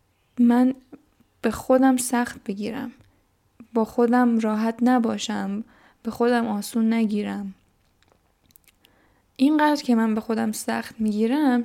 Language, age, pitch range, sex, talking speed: Persian, 10-29, 210-245 Hz, female, 105 wpm